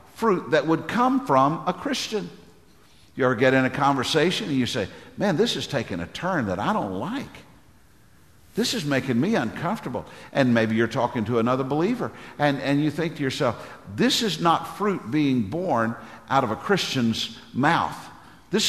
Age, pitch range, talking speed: 50-69, 130-195 Hz, 180 wpm